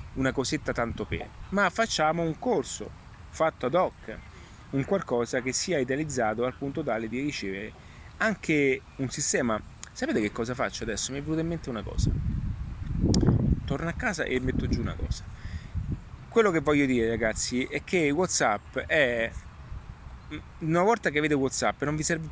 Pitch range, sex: 110-150 Hz, male